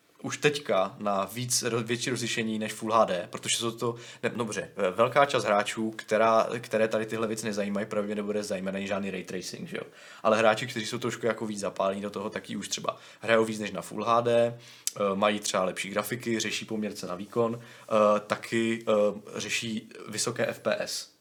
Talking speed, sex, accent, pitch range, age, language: 165 wpm, male, native, 105-115 Hz, 20-39, Czech